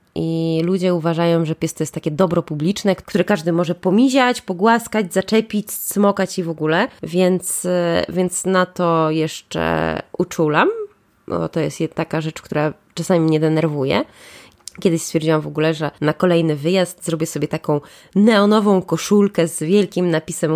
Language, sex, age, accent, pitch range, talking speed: Polish, female, 20-39, native, 145-185 Hz, 150 wpm